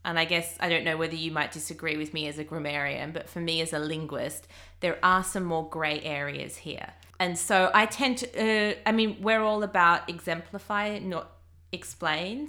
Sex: female